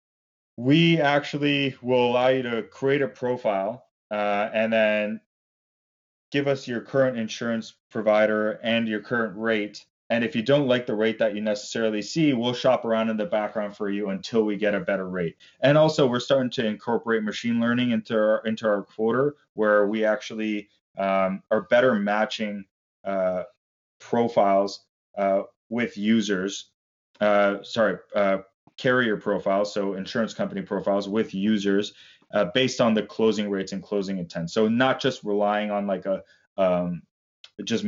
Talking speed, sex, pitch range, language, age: 160 wpm, male, 100-115 Hz, English, 20-39